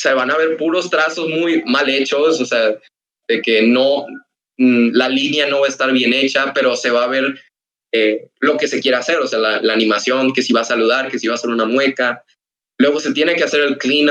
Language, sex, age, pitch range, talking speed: Spanish, male, 20-39, 120-160 Hz, 245 wpm